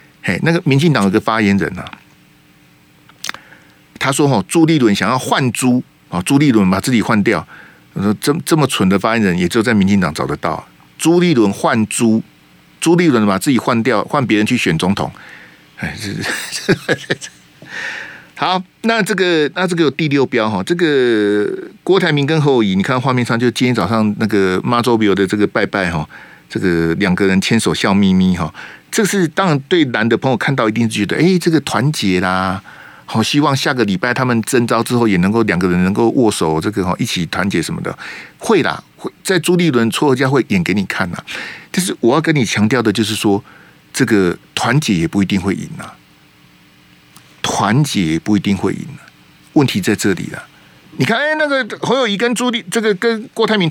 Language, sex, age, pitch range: Chinese, male, 50-69, 100-160 Hz